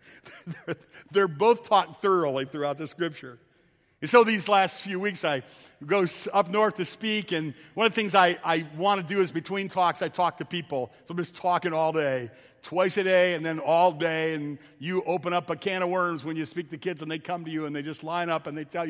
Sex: male